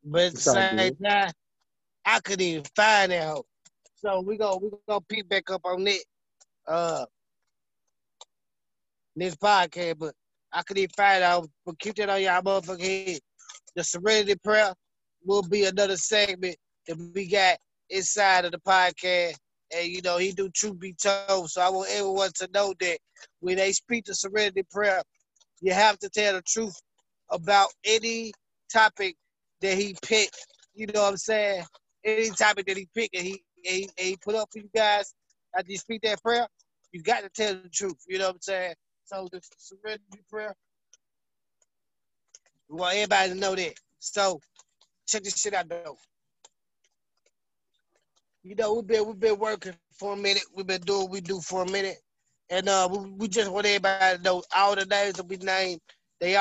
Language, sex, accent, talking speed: English, male, American, 180 wpm